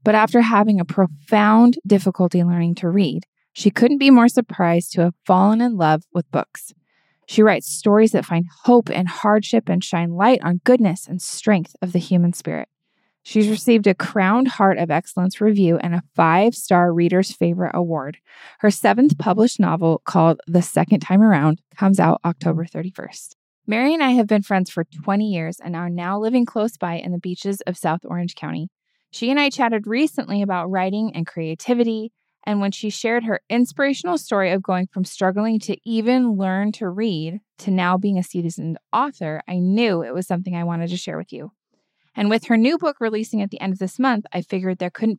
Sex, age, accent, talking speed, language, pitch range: female, 20-39, American, 195 wpm, English, 175-215 Hz